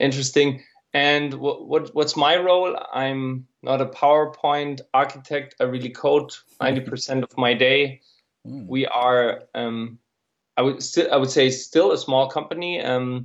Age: 20-39